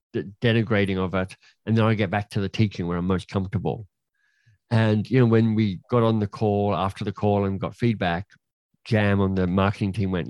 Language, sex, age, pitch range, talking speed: English, male, 50-69, 100-115 Hz, 210 wpm